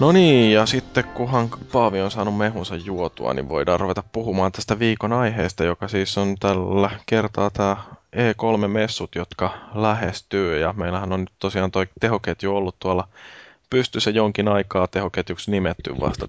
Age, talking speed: 20-39, 150 wpm